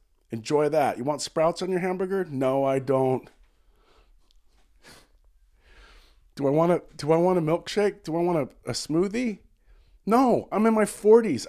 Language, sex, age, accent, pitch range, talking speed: English, male, 40-59, American, 105-155 Hz, 160 wpm